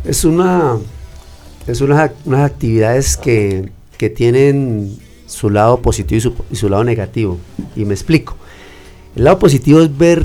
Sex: male